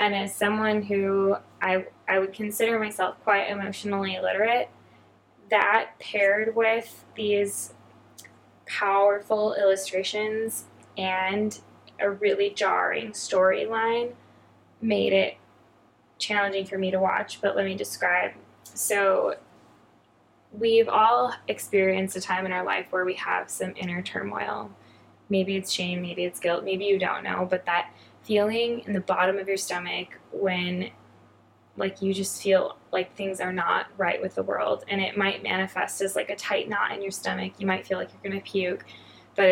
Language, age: English, 10-29